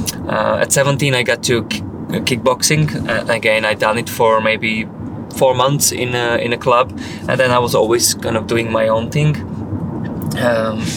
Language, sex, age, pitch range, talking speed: English, male, 20-39, 110-130 Hz, 185 wpm